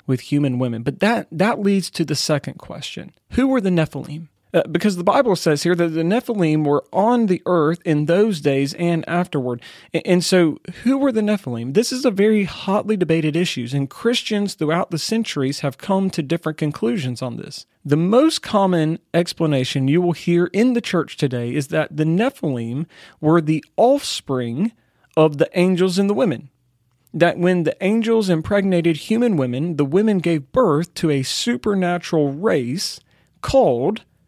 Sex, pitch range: male, 145-195 Hz